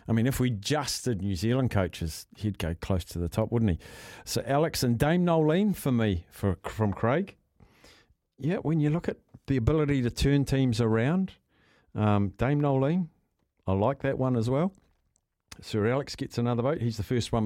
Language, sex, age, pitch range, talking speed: English, male, 50-69, 110-150 Hz, 195 wpm